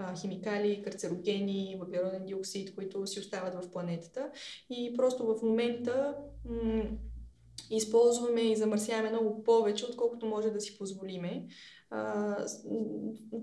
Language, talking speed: Bulgarian, 110 wpm